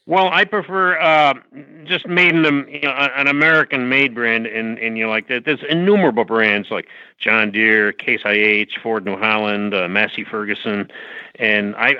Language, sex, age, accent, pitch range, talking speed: English, male, 50-69, American, 105-140 Hz, 180 wpm